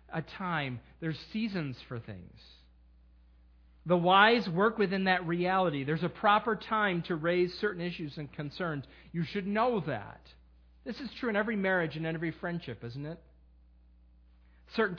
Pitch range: 125-185 Hz